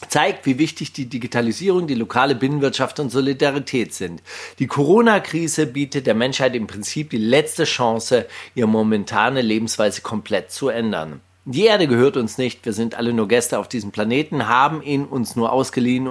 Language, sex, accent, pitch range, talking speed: German, male, German, 120-150 Hz, 170 wpm